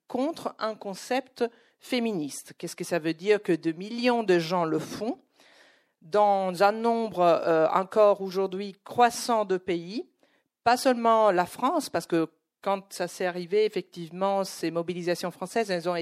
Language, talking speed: French, 150 wpm